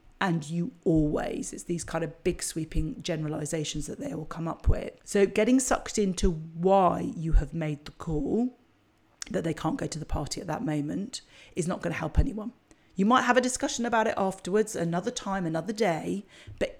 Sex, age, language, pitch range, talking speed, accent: female, 40-59, English, 160-210 Hz, 195 wpm, British